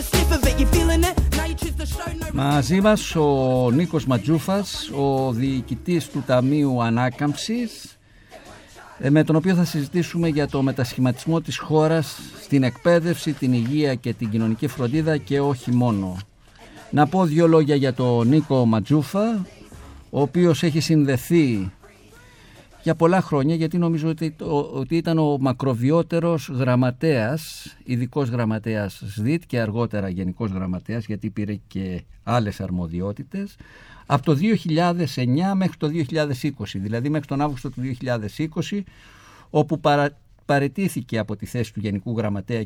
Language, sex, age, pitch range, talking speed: Greek, male, 50-69, 115-160 Hz, 120 wpm